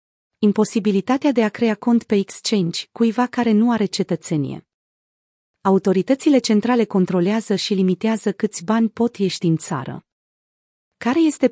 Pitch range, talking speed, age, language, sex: 180-225 Hz, 130 wpm, 30-49, Romanian, female